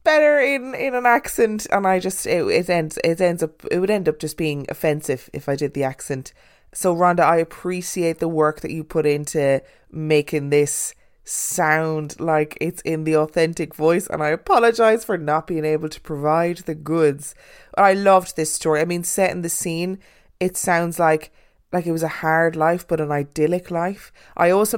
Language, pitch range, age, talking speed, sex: English, 150-180 Hz, 20-39, 195 wpm, female